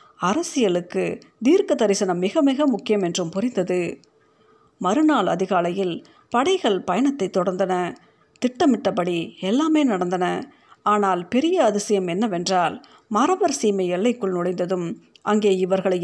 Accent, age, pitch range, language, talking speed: native, 50-69, 185-270 Hz, Tamil, 95 wpm